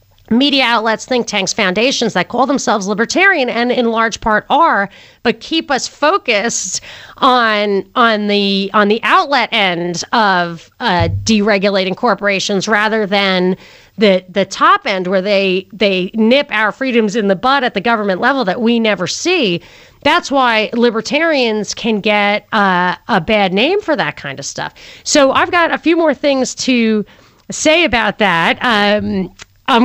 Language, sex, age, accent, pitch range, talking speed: English, female, 40-59, American, 200-265 Hz, 160 wpm